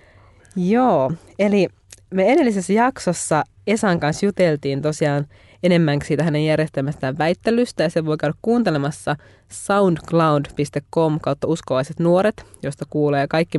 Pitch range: 140-170 Hz